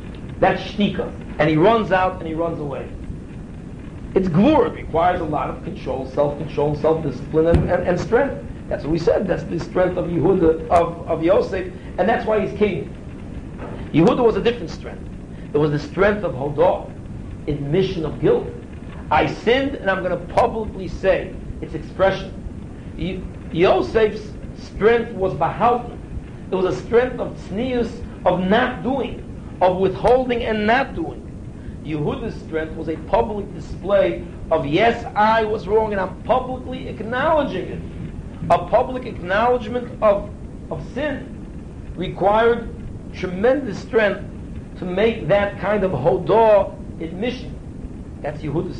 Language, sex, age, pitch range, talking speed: English, male, 60-79, 165-225 Hz, 145 wpm